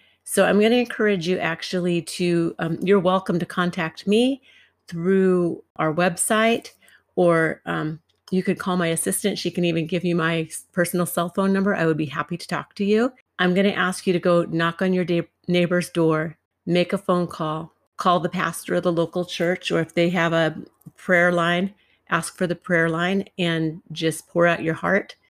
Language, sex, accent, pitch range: English, female, American, 165-185 Hz